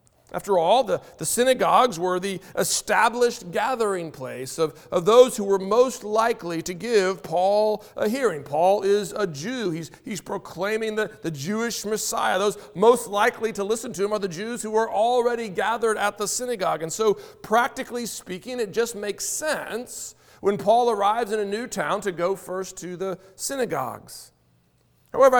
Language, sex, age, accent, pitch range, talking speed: English, male, 40-59, American, 190-240 Hz, 170 wpm